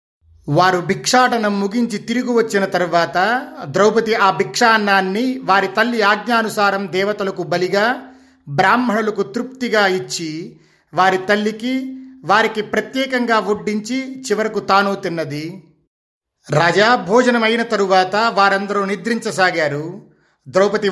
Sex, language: male, Telugu